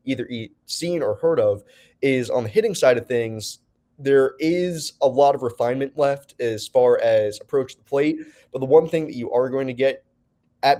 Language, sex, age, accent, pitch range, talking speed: English, male, 20-39, American, 120-155 Hz, 200 wpm